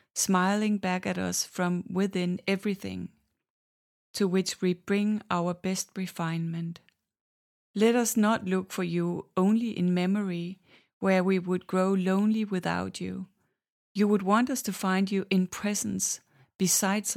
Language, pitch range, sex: Danish, 180-205 Hz, female